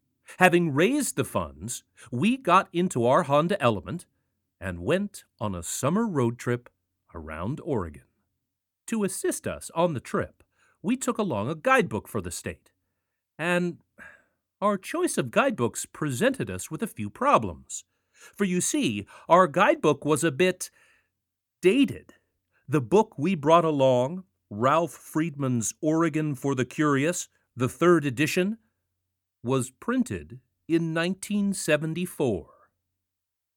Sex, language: male, English